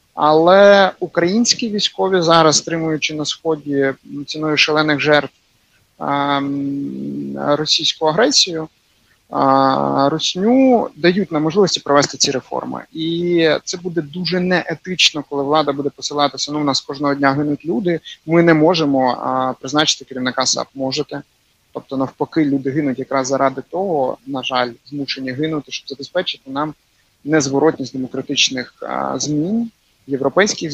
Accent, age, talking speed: native, 30-49, 115 wpm